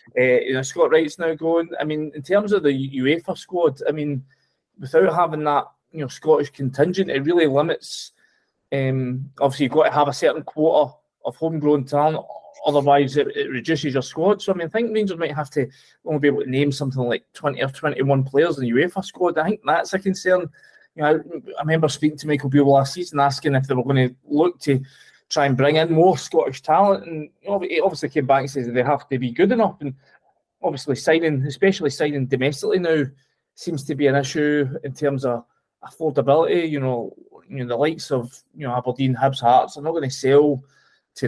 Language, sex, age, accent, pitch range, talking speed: English, male, 20-39, British, 135-165 Hz, 215 wpm